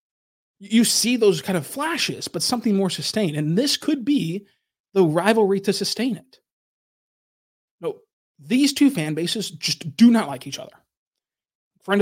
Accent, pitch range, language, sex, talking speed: American, 150-215 Hz, English, male, 155 wpm